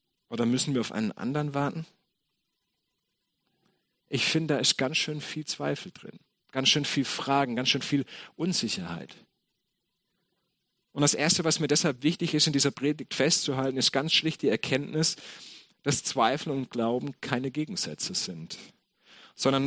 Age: 40-59